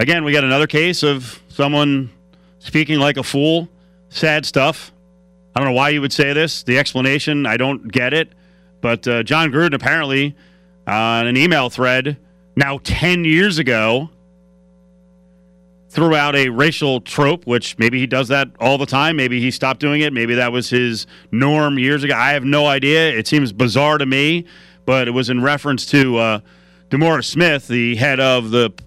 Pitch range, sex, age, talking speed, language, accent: 120-155 Hz, male, 40-59, 185 wpm, English, American